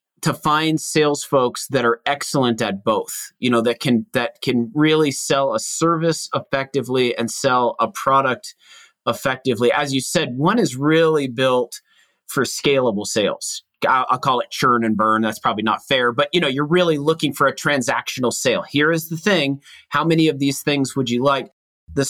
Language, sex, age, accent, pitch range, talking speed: English, male, 30-49, American, 120-155 Hz, 185 wpm